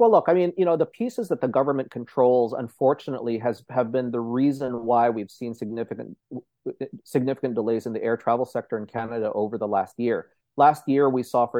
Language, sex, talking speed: English, male, 205 wpm